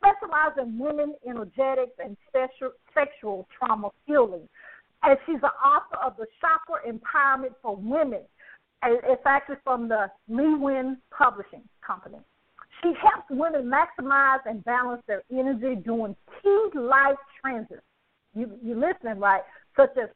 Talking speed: 125 wpm